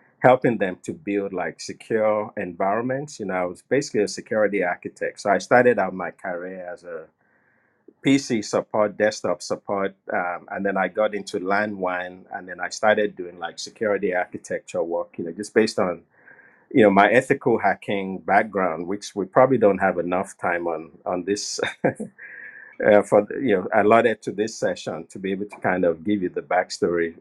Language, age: English, 50-69